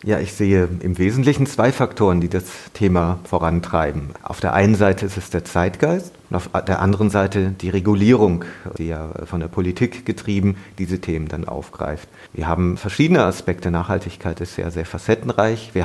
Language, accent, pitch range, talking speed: German, German, 90-110 Hz, 175 wpm